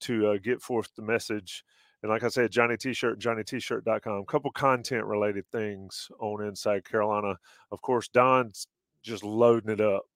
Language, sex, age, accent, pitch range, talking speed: English, male, 30-49, American, 100-120 Hz, 165 wpm